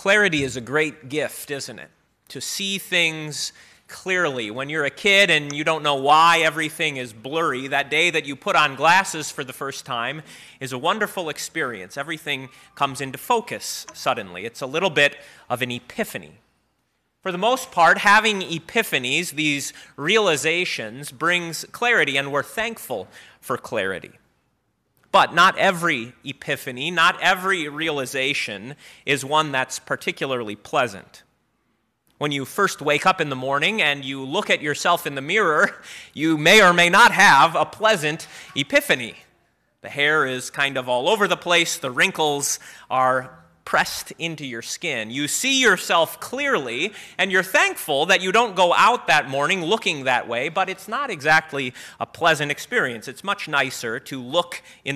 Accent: American